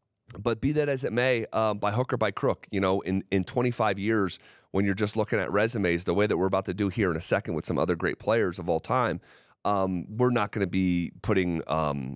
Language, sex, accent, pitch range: English, male, American, 95-125 Hz